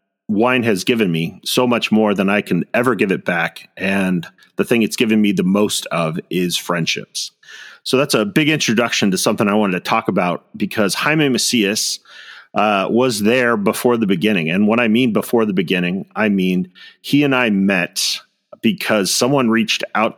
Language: English